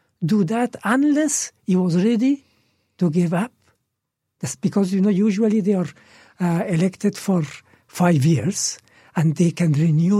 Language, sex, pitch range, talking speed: Arabic, male, 155-205 Hz, 145 wpm